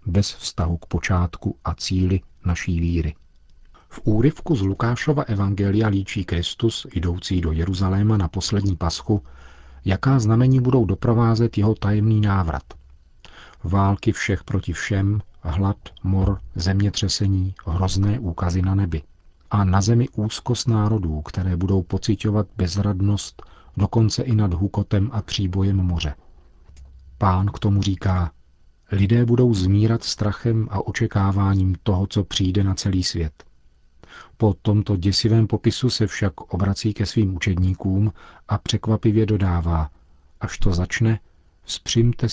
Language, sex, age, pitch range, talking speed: Czech, male, 40-59, 85-105 Hz, 125 wpm